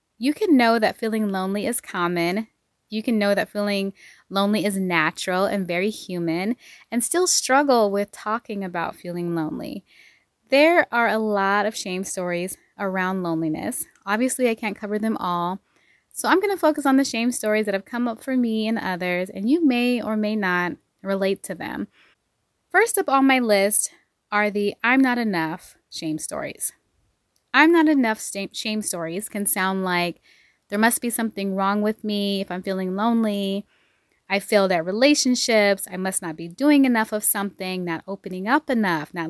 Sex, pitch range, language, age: female, 185-240 Hz, English, 20-39